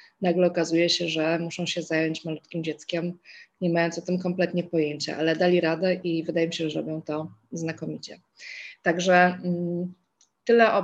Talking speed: 160 wpm